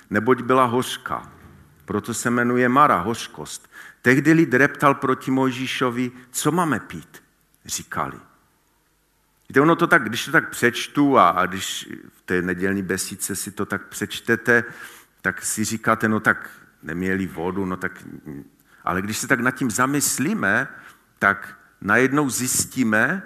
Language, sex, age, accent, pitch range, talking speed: Czech, male, 50-69, native, 100-130 Hz, 140 wpm